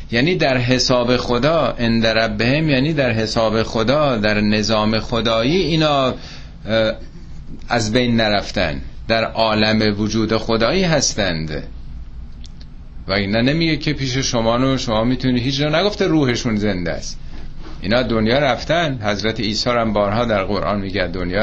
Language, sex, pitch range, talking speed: Persian, male, 100-130 Hz, 130 wpm